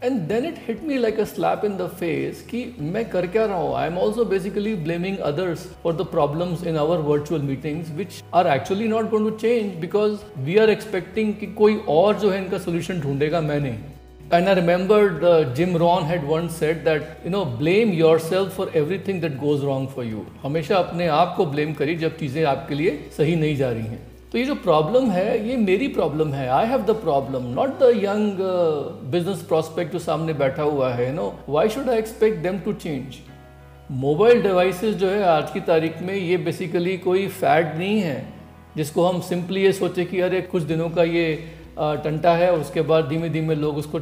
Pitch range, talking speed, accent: 155-195 Hz, 205 wpm, native